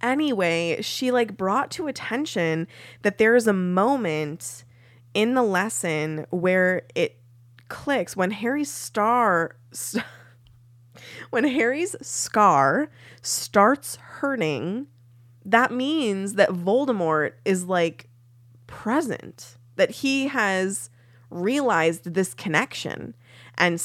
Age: 20-39